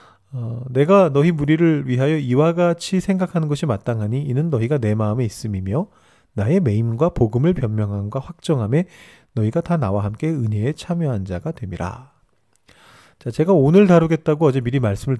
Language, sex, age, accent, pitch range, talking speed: English, male, 40-59, Korean, 115-170 Hz, 140 wpm